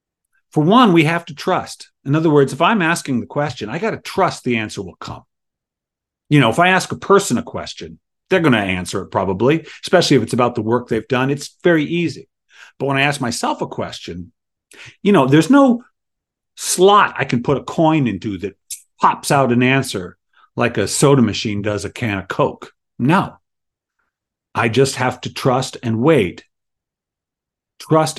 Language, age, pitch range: English, 50-69, 115-150 Hz